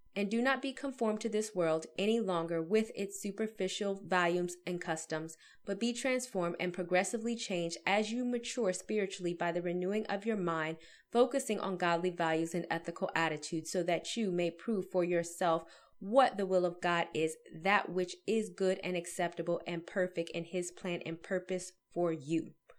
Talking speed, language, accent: 175 wpm, English, American